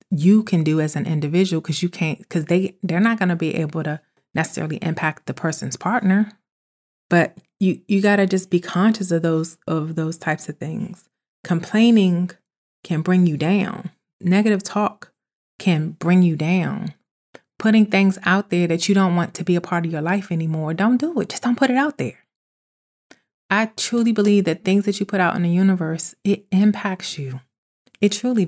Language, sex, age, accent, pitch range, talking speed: English, female, 30-49, American, 165-200 Hz, 190 wpm